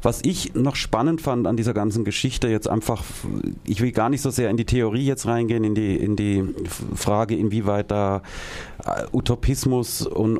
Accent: German